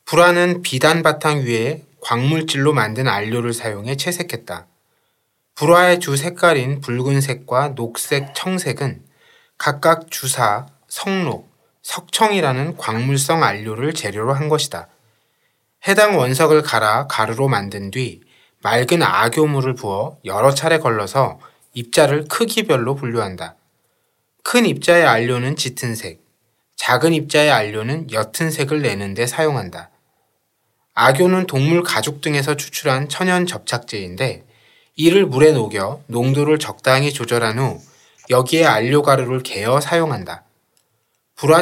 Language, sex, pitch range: Korean, male, 120-165 Hz